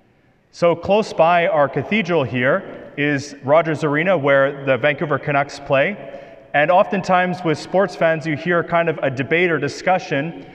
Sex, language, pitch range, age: male, English, 145-180 Hz, 30-49